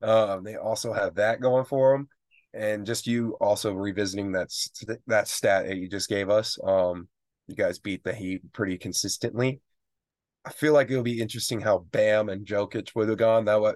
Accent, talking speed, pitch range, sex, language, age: American, 195 wpm, 95-115 Hz, male, English, 20-39